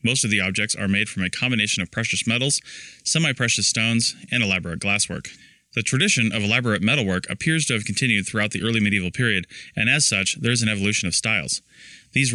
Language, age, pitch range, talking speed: English, 20-39, 100-115 Hz, 200 wpm